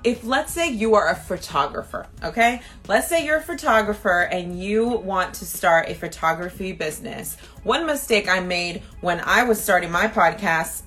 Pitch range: 180-225 Hz